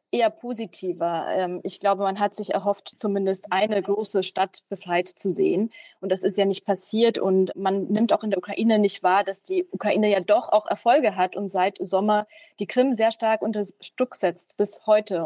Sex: female